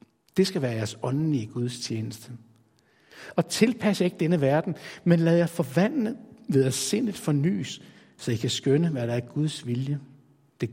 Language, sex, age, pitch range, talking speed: Danish, male, 60-79, 120-165 Hz, 175 wpm